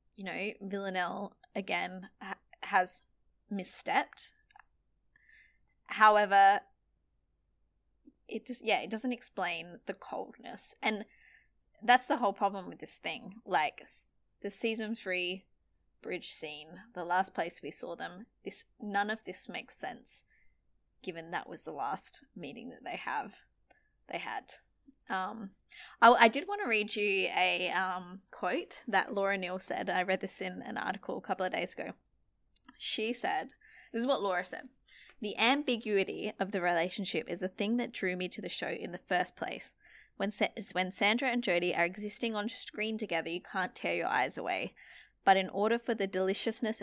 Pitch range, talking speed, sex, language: 185-230 Hz, 160 wpm, female, English